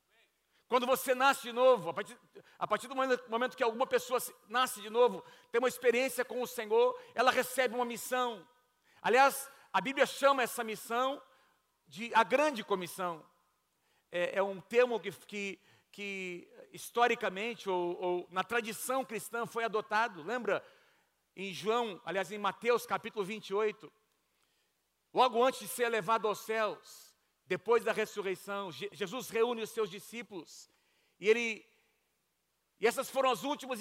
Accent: Brazilian